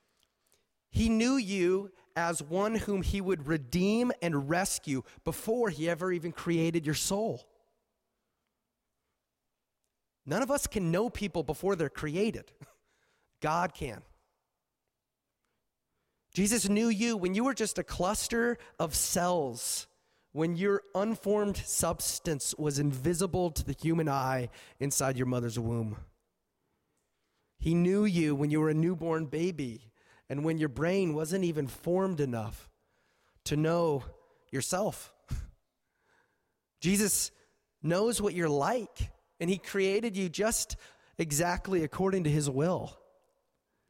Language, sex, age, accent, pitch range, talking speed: English, male, 30-49, American, 155-200 Hz, 120 wpm